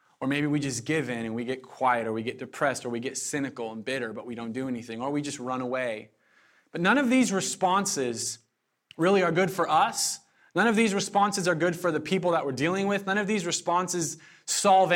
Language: English